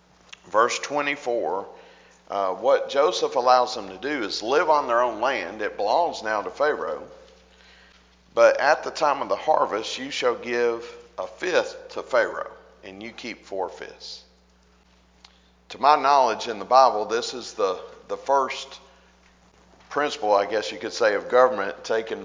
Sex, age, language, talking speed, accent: male, 50-69, English, 160 wpm, American